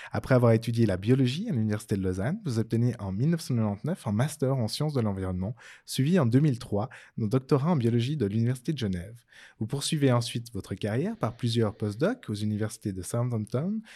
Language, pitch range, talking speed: French, 105-135 Hz, 180 wpm